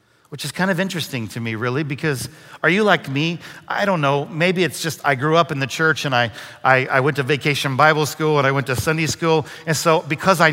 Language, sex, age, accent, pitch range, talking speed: English, male, 50-69, American, 140-175 Hz, 250 wpm